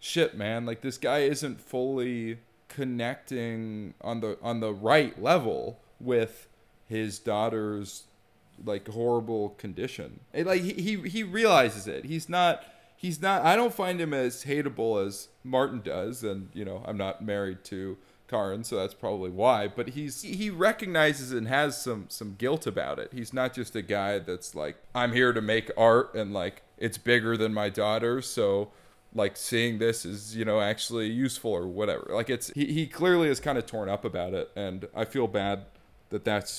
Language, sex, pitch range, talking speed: English, male, 105-135 Hz, 180 wpm